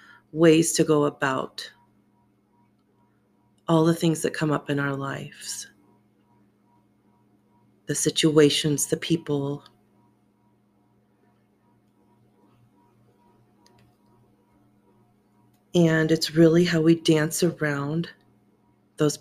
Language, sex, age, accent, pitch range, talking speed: English, female, 30-49, American, 105-165 Hz, 80 wpm